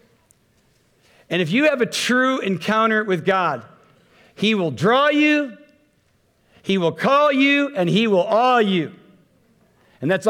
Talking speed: 140 wpm